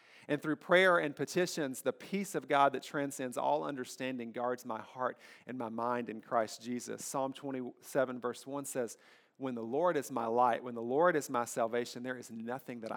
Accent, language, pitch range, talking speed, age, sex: American, English, 120-145 Hz, 200 wpm, 40-59, male